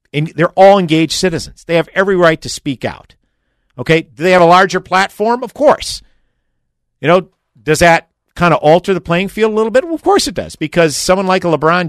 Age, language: 50-69, English